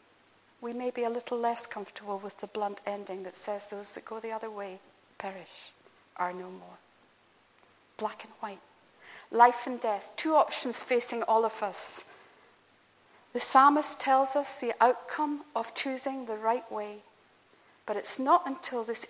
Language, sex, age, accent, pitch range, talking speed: English, female, 60-79, British, 210-255 Hz, 160 wpm